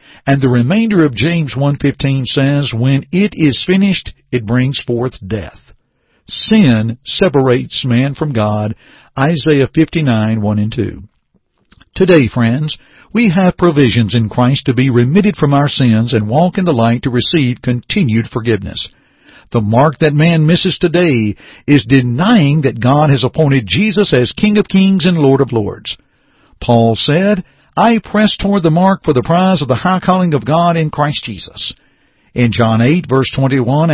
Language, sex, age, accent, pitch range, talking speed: English, male, 60-79, American, 120-175 Hz, 165 wpm